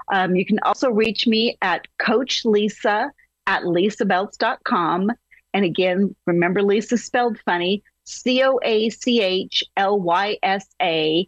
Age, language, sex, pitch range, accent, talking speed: 40-59, English, female, 185-240 Hz, American, 90 wpm